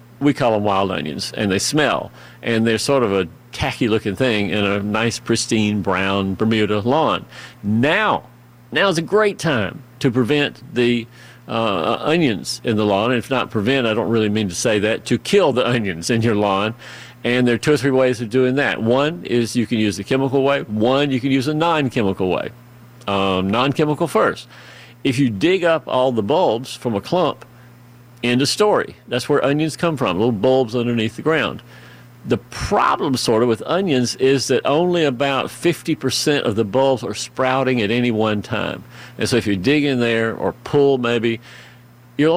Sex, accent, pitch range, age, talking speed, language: male, American, 110-135 Hz, 50-69, 190 wpm, English